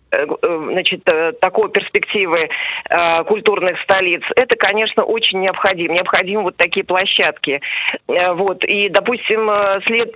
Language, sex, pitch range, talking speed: Russian, female, 175-215 Hz, 105 wpm